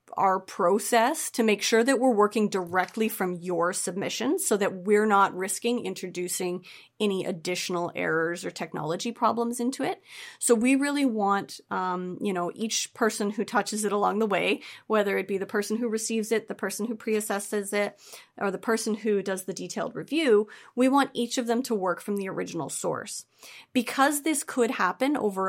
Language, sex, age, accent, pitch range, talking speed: English, female, 30-49, American, 185-235 Hz, 185 wpm